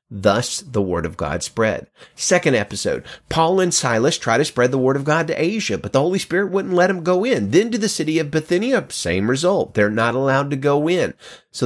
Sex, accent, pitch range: male, American, 115-175 Hz